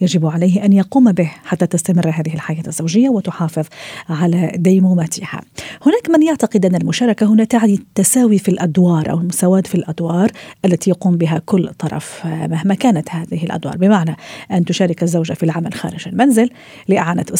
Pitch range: 170-215 Hz